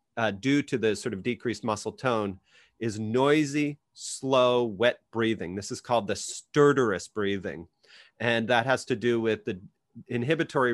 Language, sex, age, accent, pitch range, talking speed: English, male, 30-49, American, 105-135 Hz, 155 wpm